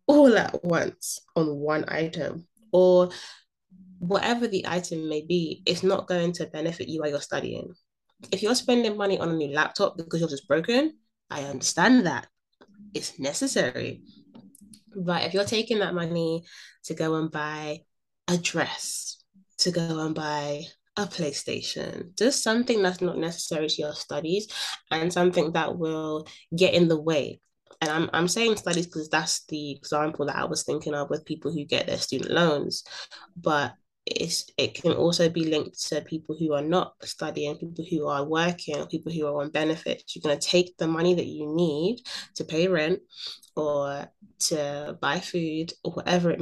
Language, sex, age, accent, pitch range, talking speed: English, female, 20-39, British, 155-190 Hz, 175 wpm